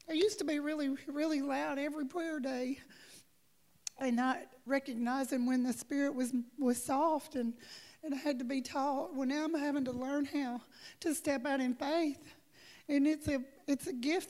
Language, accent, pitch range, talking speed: English, American, 255-295 Hz, 185 wpm